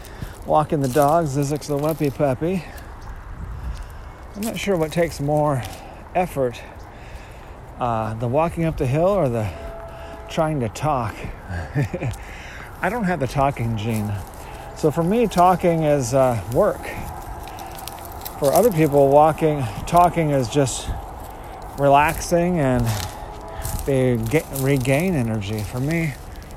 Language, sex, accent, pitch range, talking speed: English, male, American, 110-150 Hz, 120 wpm